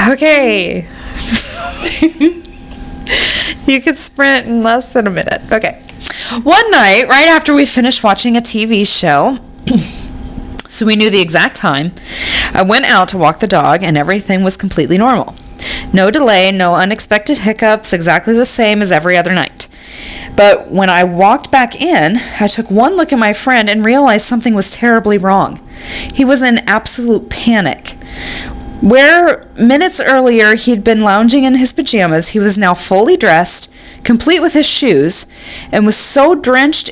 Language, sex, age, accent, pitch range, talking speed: English, female, 20-39, American, 195-265 Hz, 155 wpm